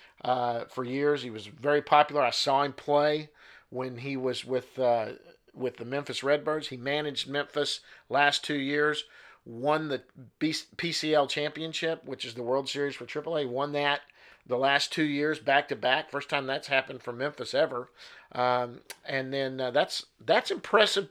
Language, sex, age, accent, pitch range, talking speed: English, male, 50-69, American, 130-155 Hz, 165 wpm